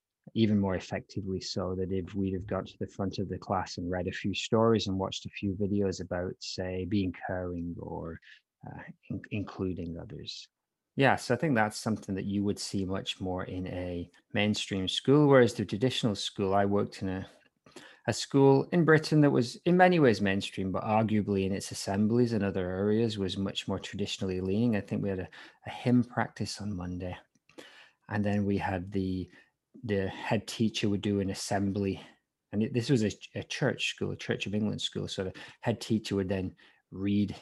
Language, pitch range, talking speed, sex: English, 95-110 Hz, 195 wpm, male